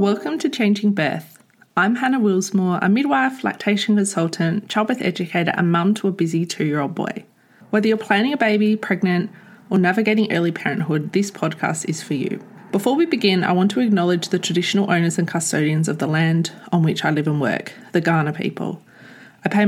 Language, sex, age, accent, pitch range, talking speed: English, female, 20-39, Australian, 180-220 Hz, 185 wpm